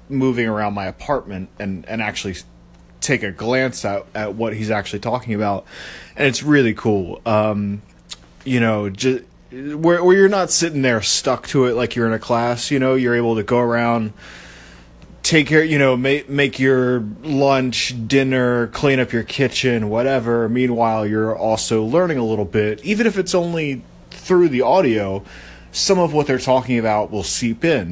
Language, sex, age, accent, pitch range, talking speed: English, male, 20-39, American, 105-140 Hz, 180 wpm